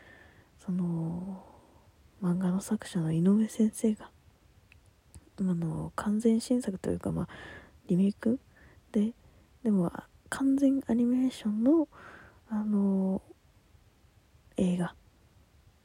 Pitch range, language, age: 170-235 Hz, Japanese, 20-39